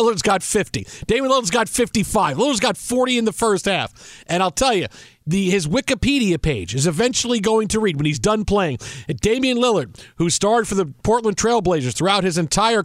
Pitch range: 160-230 Hz